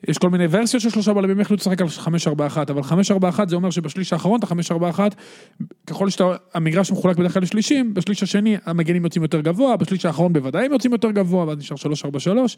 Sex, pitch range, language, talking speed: male, 165-210 Hz, Hebrew, 190 wpm